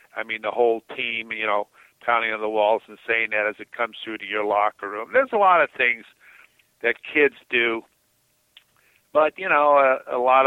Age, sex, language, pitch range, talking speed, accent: 50-69, male, English, 110-130 Hz, 205 wpm, American